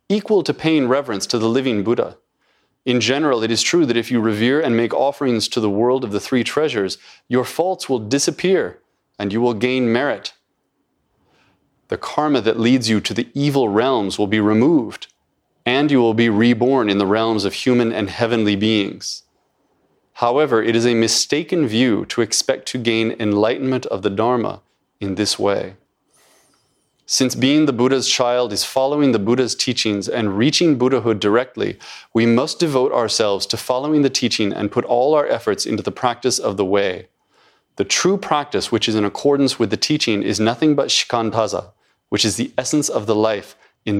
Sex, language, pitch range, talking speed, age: male, English, 110-130 Hz, 180 wpm, 30-49